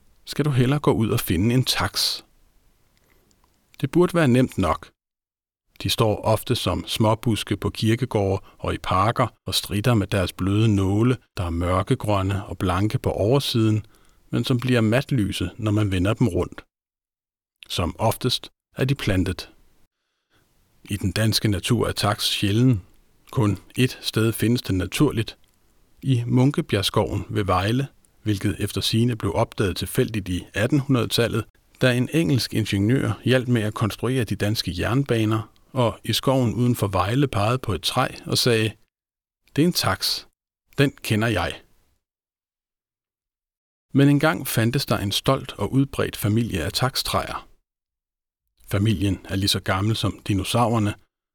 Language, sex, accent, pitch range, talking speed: Danish, male, native, 100-125 Hz, 145 wpm